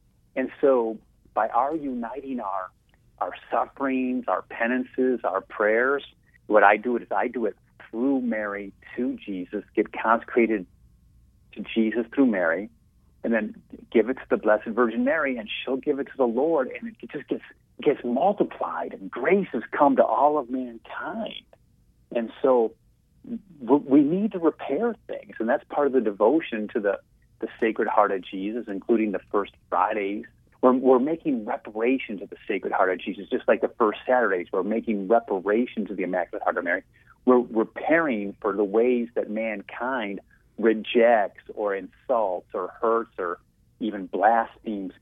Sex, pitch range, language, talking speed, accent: male, 110-140 Hz, English, 165 wpm, American